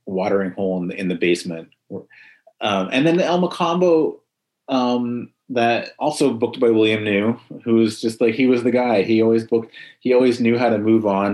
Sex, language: male, English